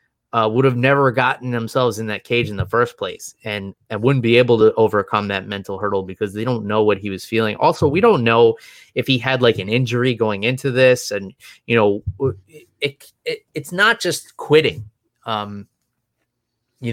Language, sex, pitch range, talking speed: English, male, 110-135 Hz, 195 wpm